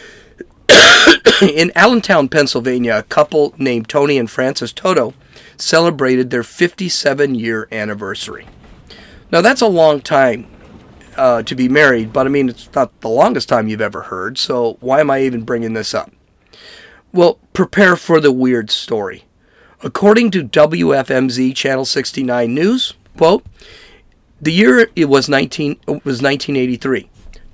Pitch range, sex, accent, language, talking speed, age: 125-170 Hz, male, American, English, 145 wpm, 40-59